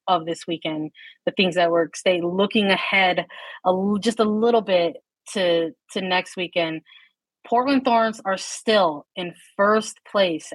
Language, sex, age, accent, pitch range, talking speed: English, female, 30-49, American, 185-225 Hz, 150 wpm